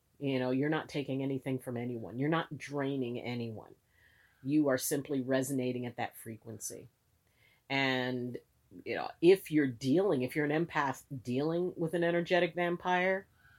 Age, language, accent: 40-59, English, American